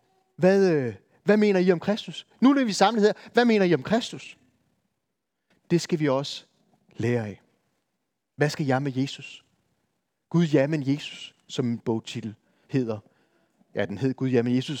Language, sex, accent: Danish, male, native